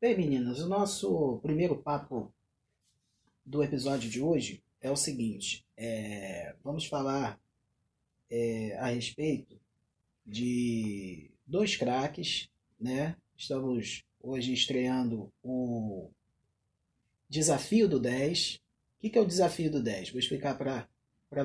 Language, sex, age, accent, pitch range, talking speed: Portuguese, male, 20-39, Brazilian, 115-150 Hz, 105 wpm